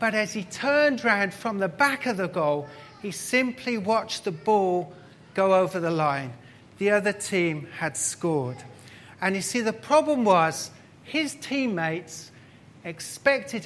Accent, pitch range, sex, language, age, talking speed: British, 160-245 Hz, male, English, 40-59, 150 wpm